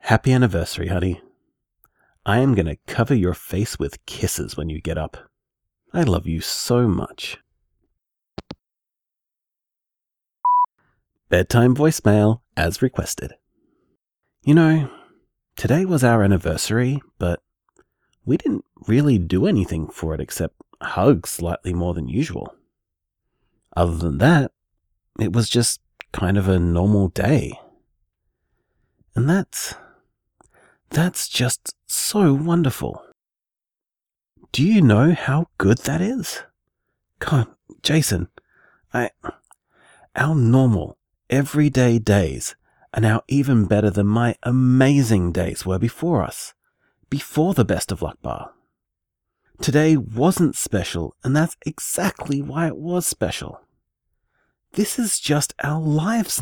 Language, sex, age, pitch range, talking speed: English, male, 30-49, 90-150 Hz, 115 wpm